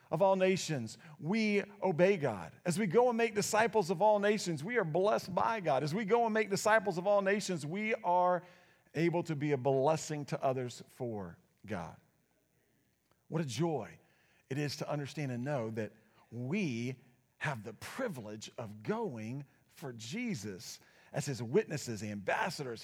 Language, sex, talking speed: English, male, 165 wpm